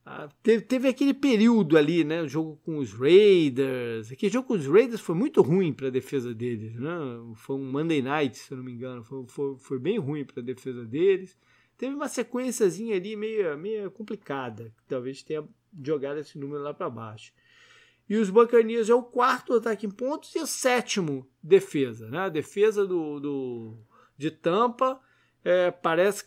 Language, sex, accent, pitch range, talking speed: Portuguese, male, Brazilian, 130-210 Hz, 185 wpm